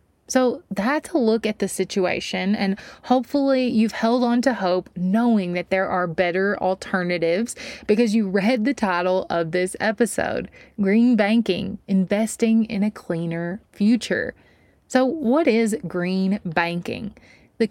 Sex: female